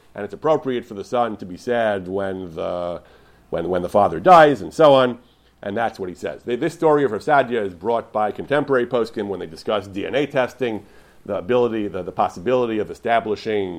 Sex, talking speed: male, 200 wpm